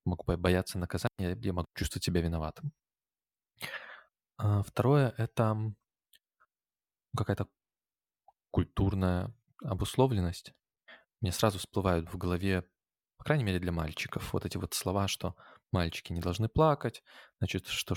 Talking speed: 115 wpm